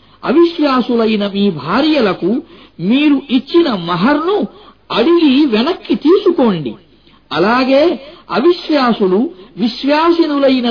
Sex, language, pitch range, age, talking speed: male, Arabic, 215-305 Hz, 50-69, 75 wpm